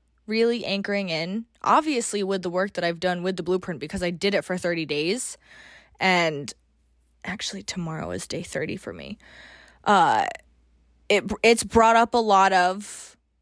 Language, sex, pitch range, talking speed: English, female, 180-230 Hz, 160 wpm